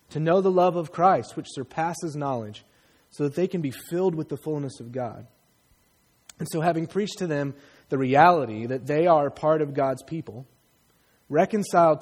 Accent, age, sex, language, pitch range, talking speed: American, 30-49, male, English, 120-155 Hz, 180 wpm